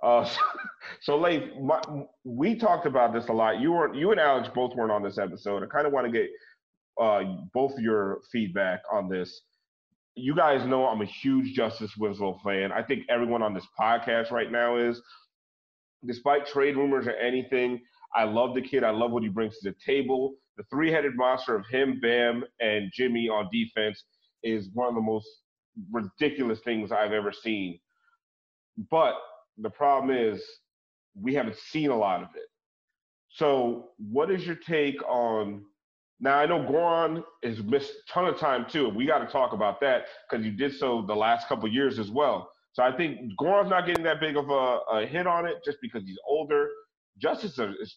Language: English